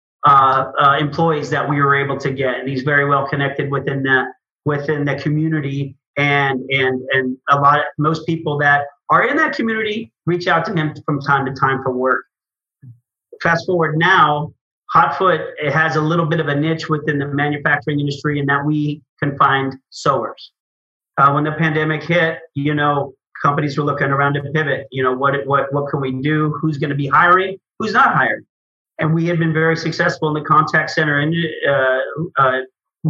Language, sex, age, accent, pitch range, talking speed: English, male, 40-59, American, 140-155 Hz, 195 wpm